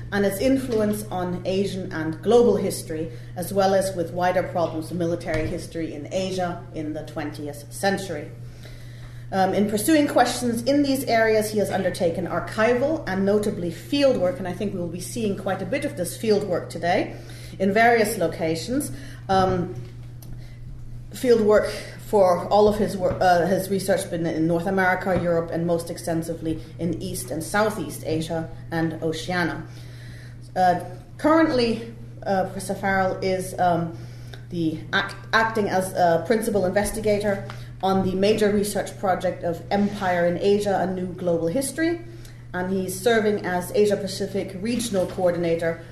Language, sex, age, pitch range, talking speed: English, female, 40-59, 155-200 Hz, 150 wpm